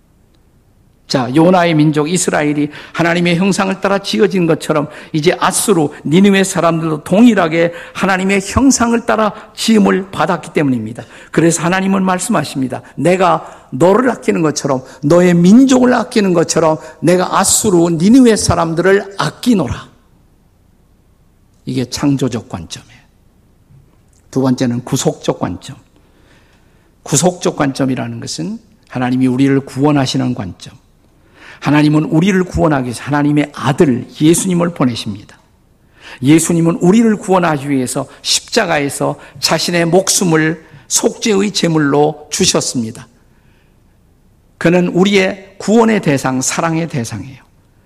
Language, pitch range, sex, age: Korean, 130-185 Hz, male, 50-69